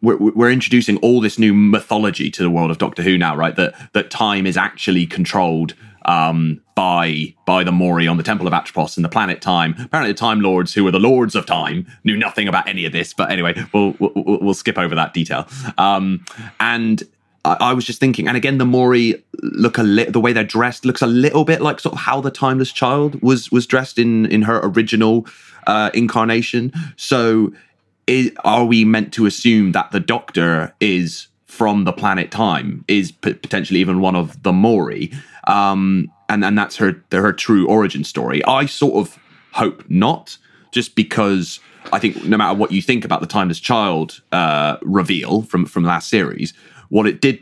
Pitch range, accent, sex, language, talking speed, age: 95-120 Hz, British, male, English, 195 wpm, 30-49